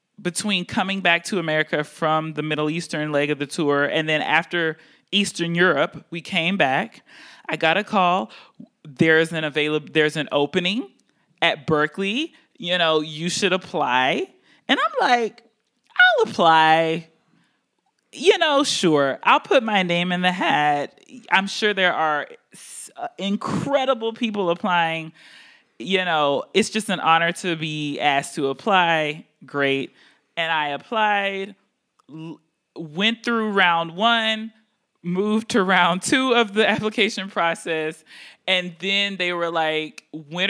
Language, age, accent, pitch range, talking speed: English, 20-39, American, 160-215 Hz, 140 wpm